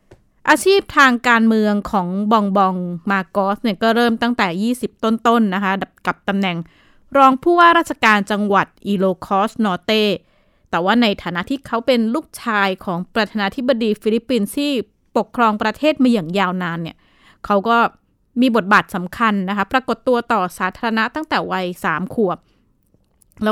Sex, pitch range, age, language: female, 195-245 Hz, 20-39, Thai